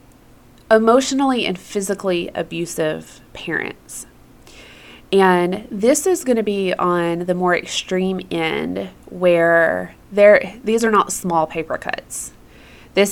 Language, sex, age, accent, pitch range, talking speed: English, female, 20-39, American, 170-205 Hz, 110 wpm